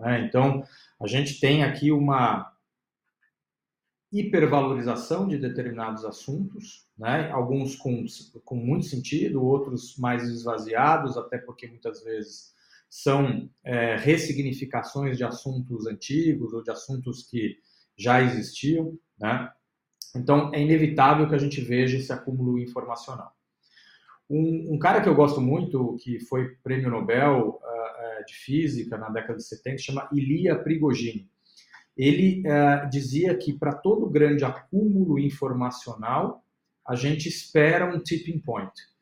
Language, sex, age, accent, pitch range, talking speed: Portuguese, male, 40-59, Brazilian, 120-155 Hz, 125 wpm